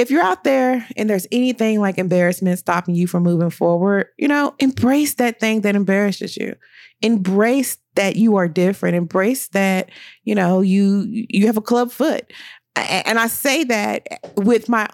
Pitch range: 185-235 Hz